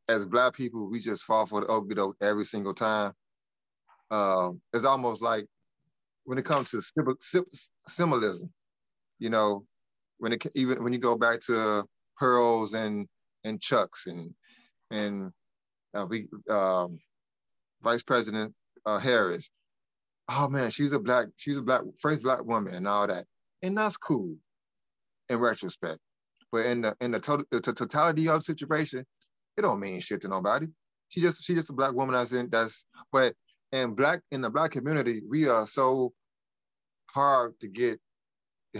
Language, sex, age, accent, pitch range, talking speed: English, male, 30-49, American, 110-150 Hz, 160 wpm